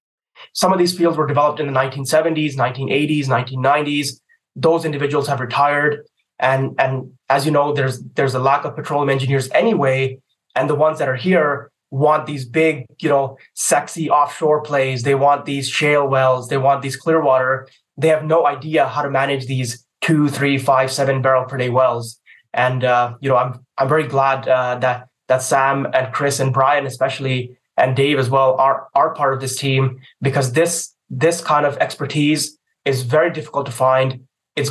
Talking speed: 185 wpm